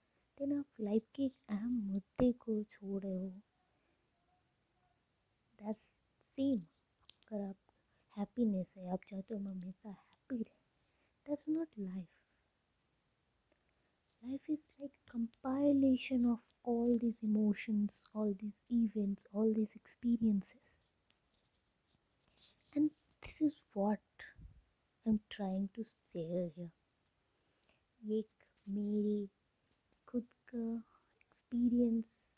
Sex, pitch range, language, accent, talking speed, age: female, 180-220 Hz, Hindi, native, 95 wpm, 20-39